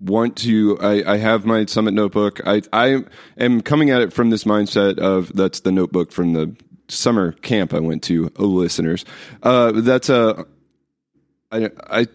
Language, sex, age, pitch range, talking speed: English, male, 30-49, 85-110 Hz, 170 wpm